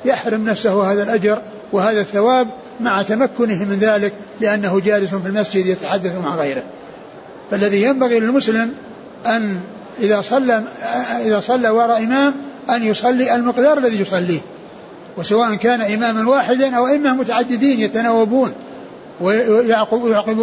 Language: Arabic